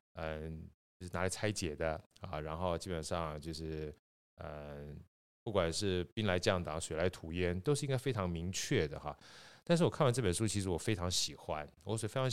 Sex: male